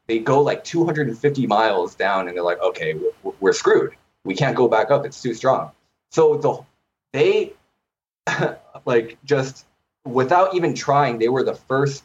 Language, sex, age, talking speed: English, male, 20-39, 165 wpm